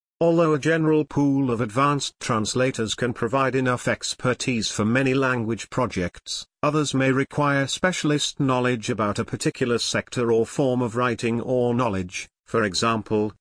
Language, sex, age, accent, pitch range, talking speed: English, male, 50-69, British, 110-140 Hz, 145 wpm